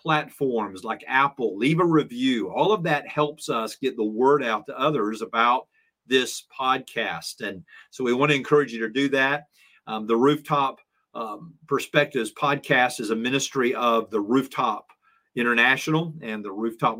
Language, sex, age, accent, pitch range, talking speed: English, male, 40-59, American, 115-150 Hz, 160 wpm